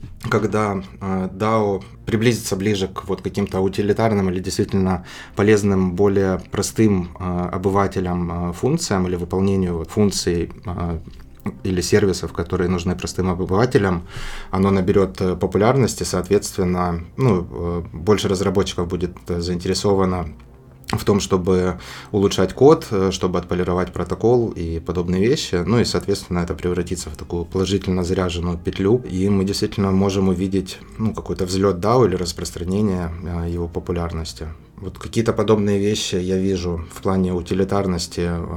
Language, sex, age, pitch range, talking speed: Russian, male, 20-39, 90-100 Hz, 120 wpm